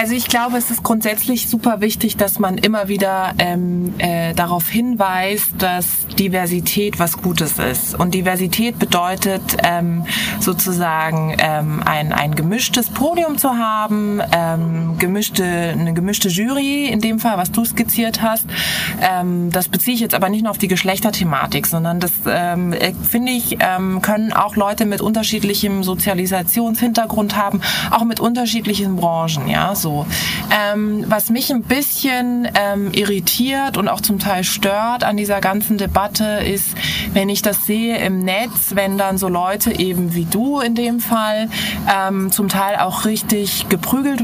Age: 20-39